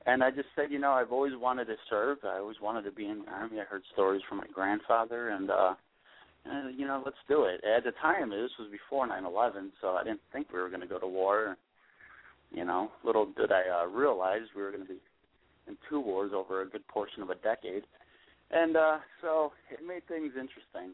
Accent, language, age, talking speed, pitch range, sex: American, English, 30-49, 230 wpm, 95-135 Hz, male